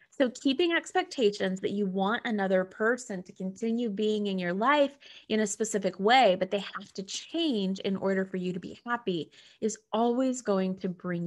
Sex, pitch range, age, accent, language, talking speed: female, 200-275 Hz, 20-39, American, English, 185 wpm